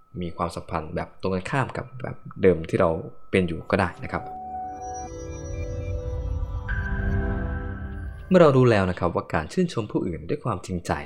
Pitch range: 90-130 Hz